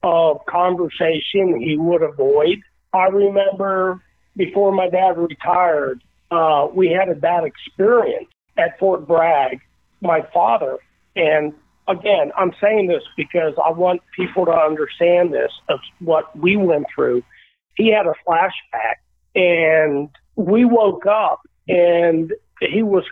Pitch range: 160-200 Hz